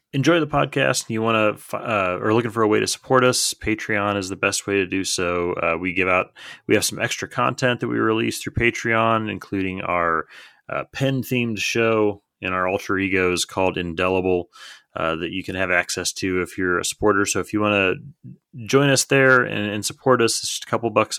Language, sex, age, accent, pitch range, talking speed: English, male, 30-49, American, 95-115 Hz, 220 wpm